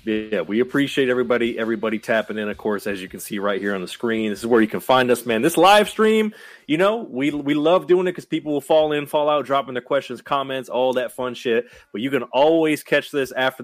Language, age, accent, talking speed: English, 30-49, American, 255 wpm